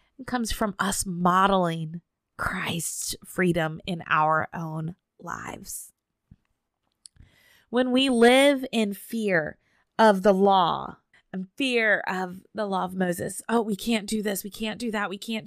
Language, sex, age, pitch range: English, female, 20-39, 190-225 Hz